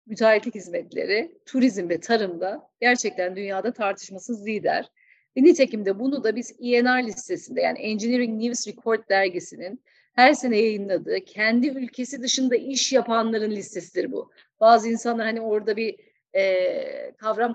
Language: Turkish